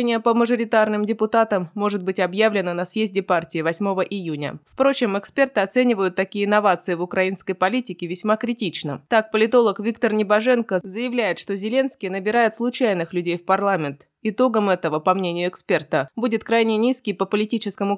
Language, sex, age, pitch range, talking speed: Russian, female, 20-39, 180-225 Hz, 145 wpm